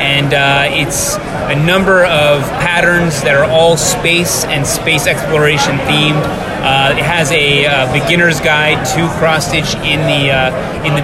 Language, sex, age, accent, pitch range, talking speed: English, male, 30-49, American, 140-160 Hz, 145 wpm